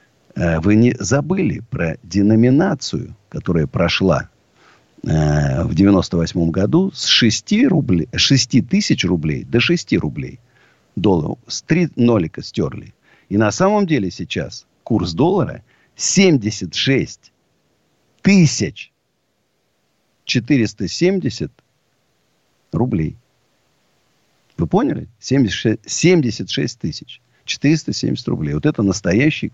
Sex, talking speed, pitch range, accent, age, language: male, 95 wpm, 90-150 Hz, native, 50-69, Russian